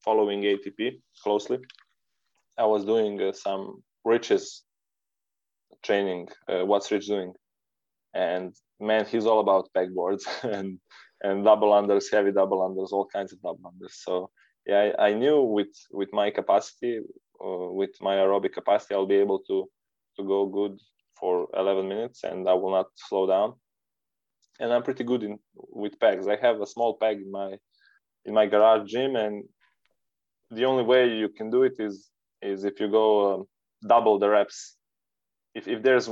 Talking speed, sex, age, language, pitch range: 165 wpm, male, 20-39, English, 95-110 Hz